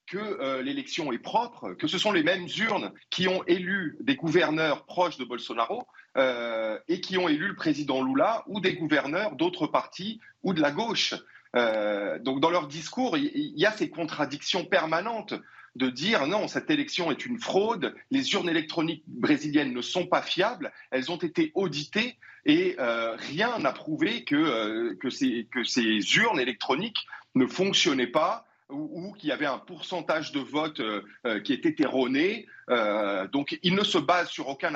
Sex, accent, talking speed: male, French, 175 wpm